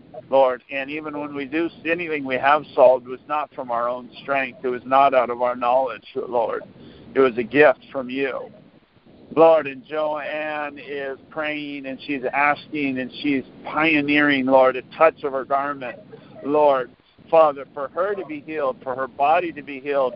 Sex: male